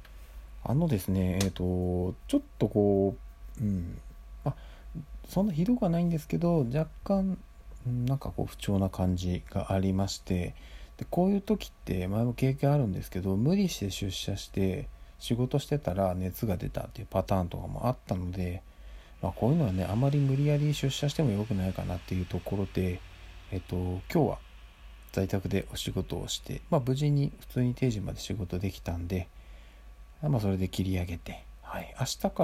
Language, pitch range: Japanese, 90-120 Hz